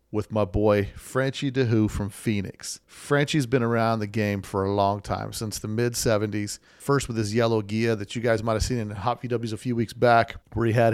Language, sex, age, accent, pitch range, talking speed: English, male, 40-59, American, 105-125 Hz, 225 wpm